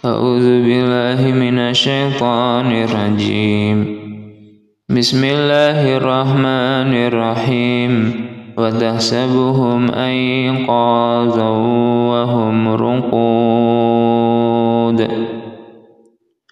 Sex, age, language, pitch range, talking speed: male, 20-39, Indonesian, 115-130 Hz, 45 wpm